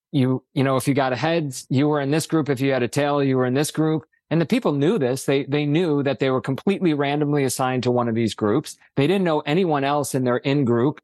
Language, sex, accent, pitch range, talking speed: English, male, American, 125-145 Hz, 270 wpm